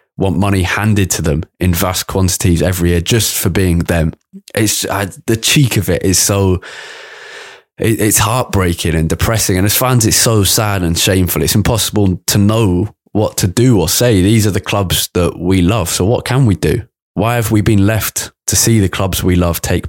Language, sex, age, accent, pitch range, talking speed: English, male, 20-39, British, 85-105 Hz, 200 wpm